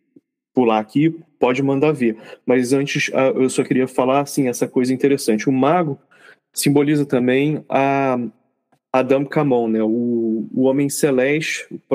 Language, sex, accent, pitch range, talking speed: Portuguese, male, Brazilian, 115-140 Hz, 135 wpm